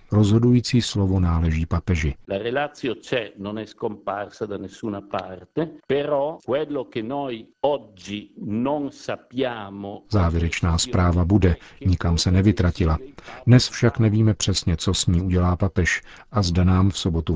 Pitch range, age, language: 85-105 Hz, 50-69, Czech